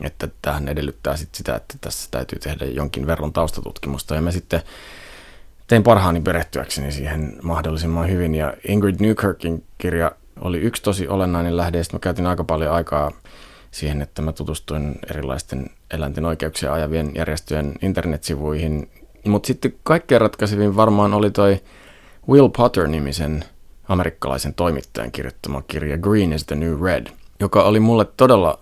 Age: 30-49